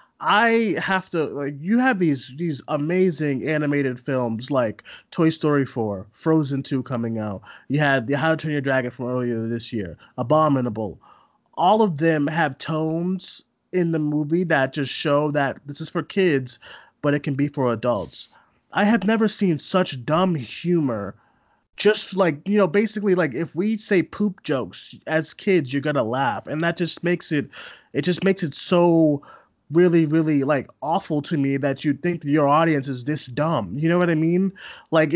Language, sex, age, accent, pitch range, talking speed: English, male, 20-39, American, 140-180 Hz, 185 wpm